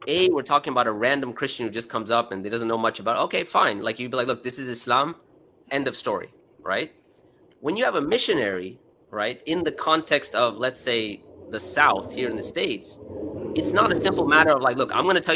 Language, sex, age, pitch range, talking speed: English, male, 30-49, 115-160 Hz, 240 wpm